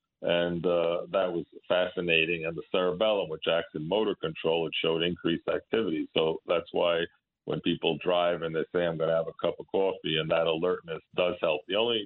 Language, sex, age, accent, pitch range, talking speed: English, male, 50-69, American, 85-95 Hz, 205 wpm